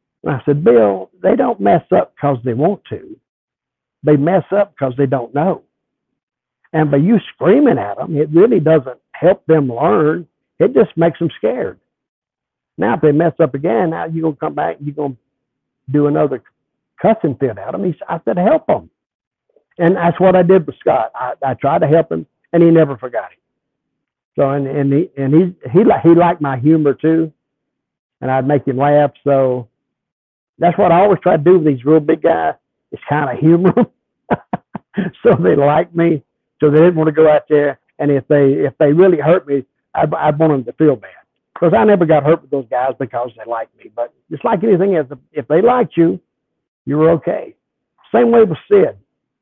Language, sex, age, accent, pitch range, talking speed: English, male, 60-79, American, 140-170 Hz, 205 wpm